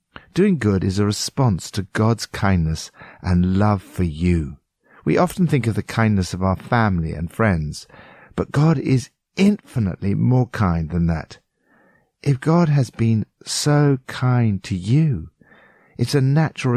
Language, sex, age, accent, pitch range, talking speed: English, male, 50-69, British, 95-140 Hz, 150 wpm